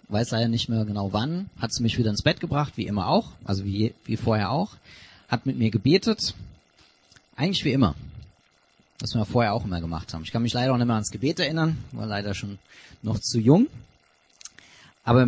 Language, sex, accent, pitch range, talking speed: German, male, German, 100-130 Hz, 205 wpm